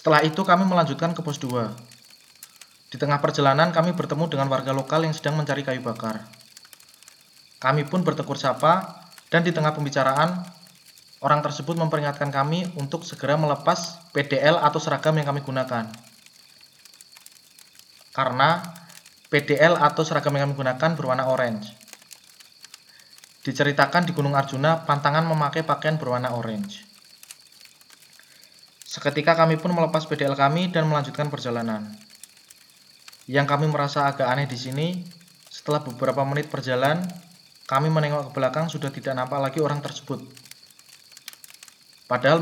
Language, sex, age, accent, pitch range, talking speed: Indonesian, male, 20-39, native, 130-160 Hz, 125 wpm